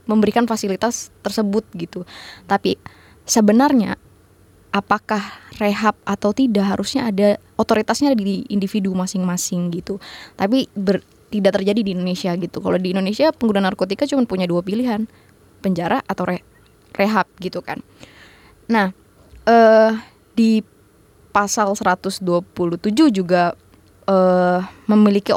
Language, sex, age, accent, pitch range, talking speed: Indonesian, female, 20-39, native, 185-220 Hz, 110 wpm